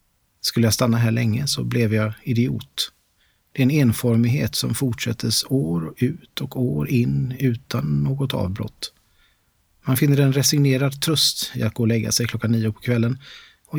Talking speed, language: 175 wpm, Swedish